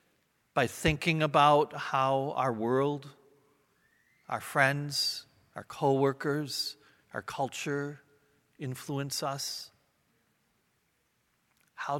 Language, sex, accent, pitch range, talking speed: English, male, American, 120-145 Hz, 75 wpm